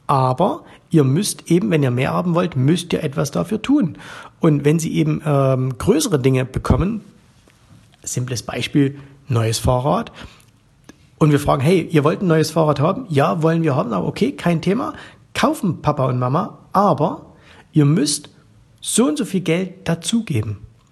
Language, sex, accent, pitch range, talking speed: German, male, German, 140-185 Hz, 165 wpm